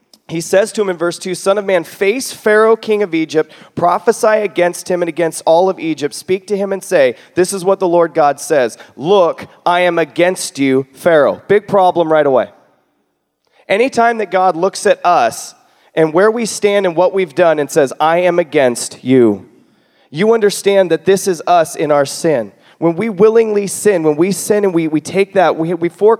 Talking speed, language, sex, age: 200 wpm, English, male, 30-49